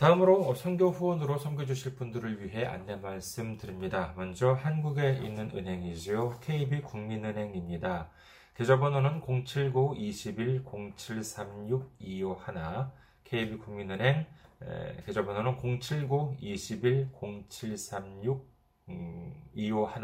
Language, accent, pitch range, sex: Korean, native, 95-130 Hz, male